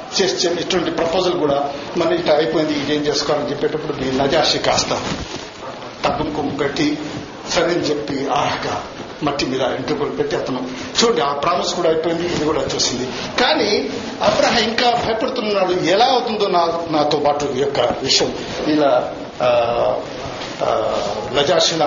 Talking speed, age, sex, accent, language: 125 wpm, 60-79, male, native, Telugu